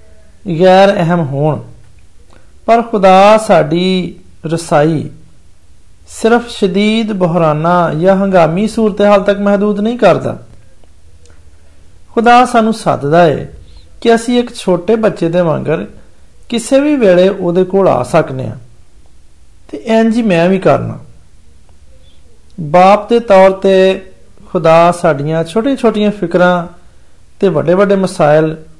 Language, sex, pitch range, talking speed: Hindi, male, 135-200 Hz, 95 wpm